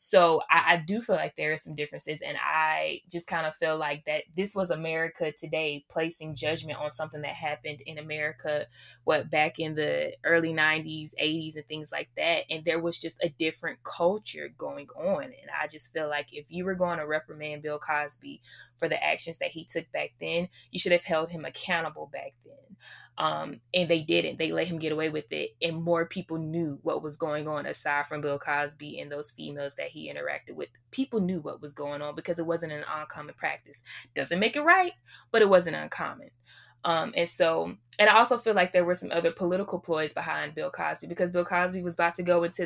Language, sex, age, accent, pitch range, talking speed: English, female, 20-39, American, 155-180 Hz, 215 wpm